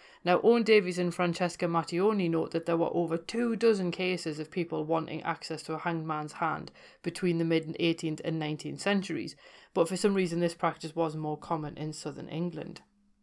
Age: 30-49